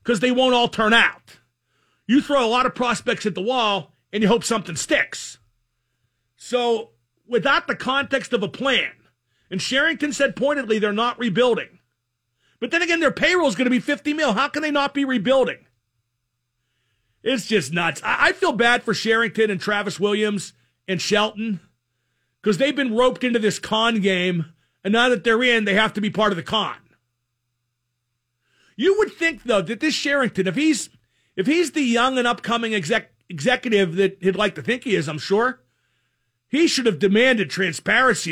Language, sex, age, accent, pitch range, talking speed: English, male, 40-59, American, 185-260 Hz, 185 wpm